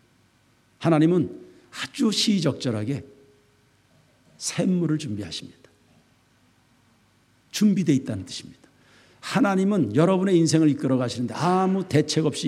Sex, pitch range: male, 120-180 Hz